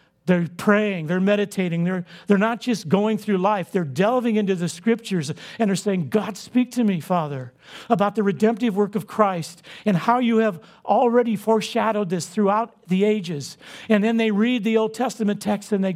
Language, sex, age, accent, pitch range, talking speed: English, male, 50-69, American, 165-210 Hz, 190 wpm